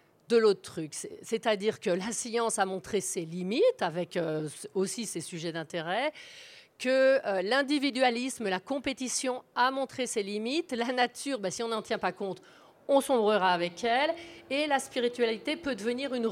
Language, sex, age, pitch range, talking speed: French, female, 40-59, 185-250 Hz, 160 wpm